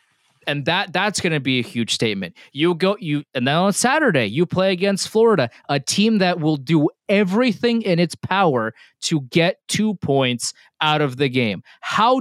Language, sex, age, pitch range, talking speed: English, male, 20-39, 140-190 Hz, 185 wpm